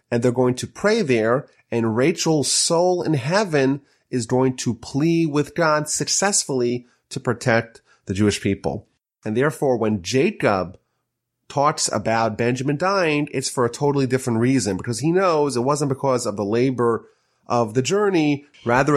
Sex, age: male, 30-49